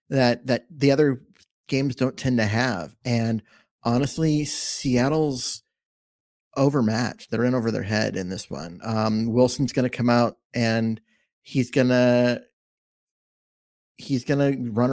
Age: 30-49